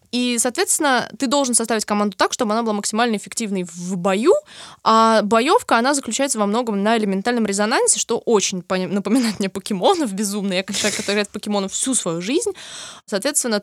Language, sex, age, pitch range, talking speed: Russian, female, 20-39, 195-240 Hz, 180 wpm